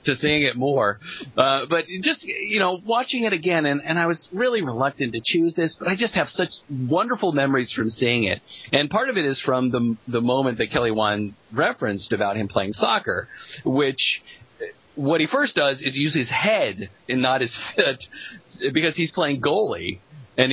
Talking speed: 195 wpm